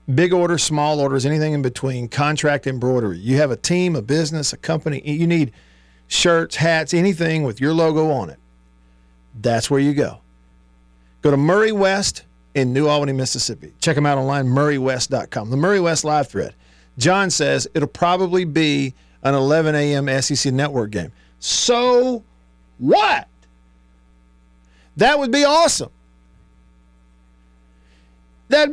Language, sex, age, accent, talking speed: English, male, 50-69, American, 140 wpm